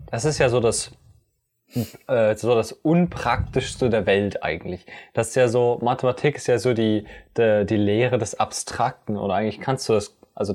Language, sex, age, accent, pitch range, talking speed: German, male, 20-39, German, 110-130 Hz, 180 wpm